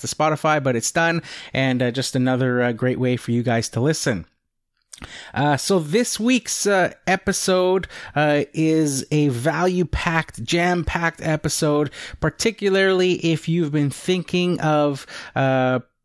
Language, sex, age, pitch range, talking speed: English, male, 30-49, 130-165 Hz, 135 wpm